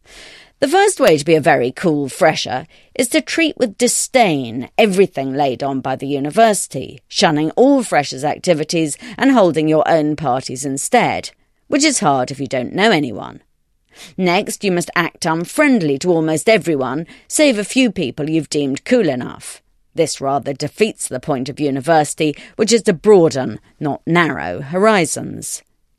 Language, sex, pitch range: English, female, 140-210 Hz